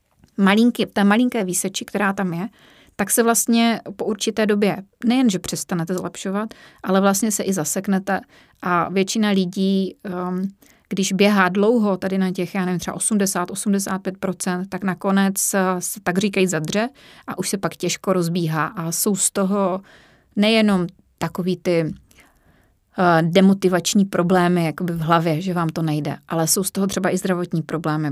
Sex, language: female, Czech